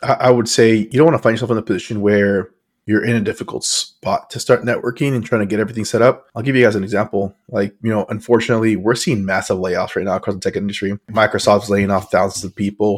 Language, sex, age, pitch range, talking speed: English, male, 20-39, 105-120 Hz, 250 wpm